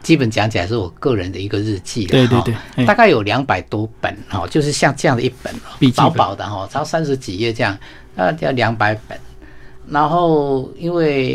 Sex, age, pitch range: male, 50-69, 110-140 Hz